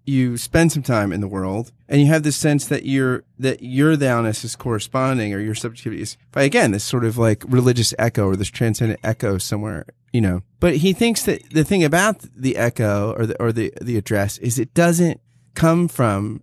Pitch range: 110-140 Hz